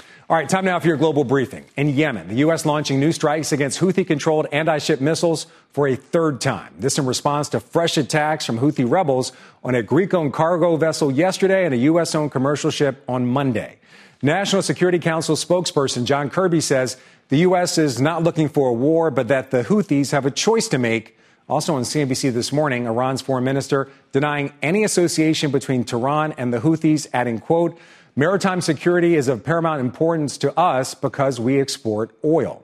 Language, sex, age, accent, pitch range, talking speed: English, male, 40-59, American, 135-165 Hz, 180 wpm